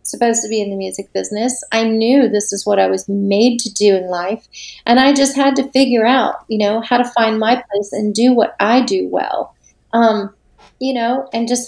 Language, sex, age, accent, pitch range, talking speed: English, female, 30-49, American, 205-240 Hz, 225 wpm